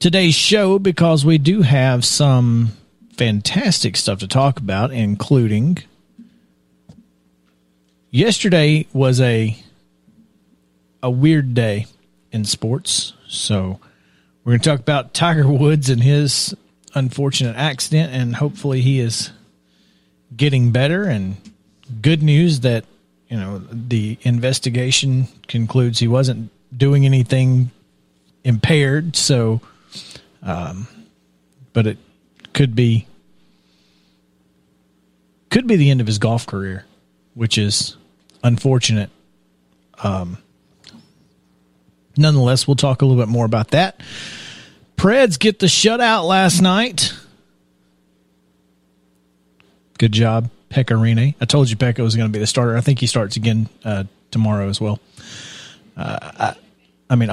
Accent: American